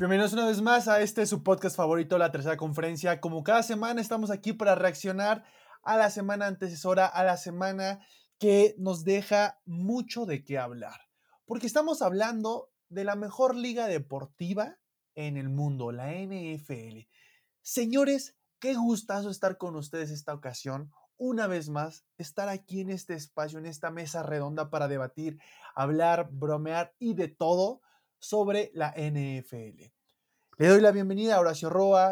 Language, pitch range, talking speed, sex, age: Spanish, 150-210 Hz, 155 wpm, male, 20-39